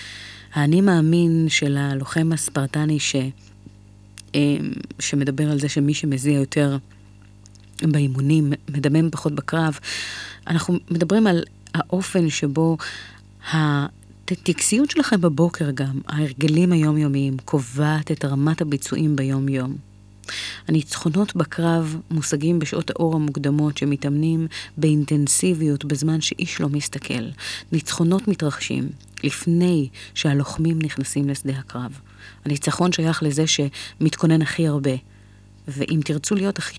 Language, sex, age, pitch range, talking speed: Hebrew, female, 30-49, 135-160 Hz, 100 wpm